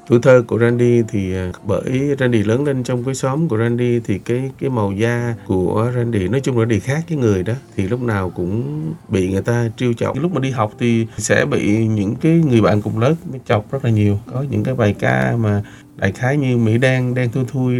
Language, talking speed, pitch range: Vietnamese, 235 wpm, 105-130 Hz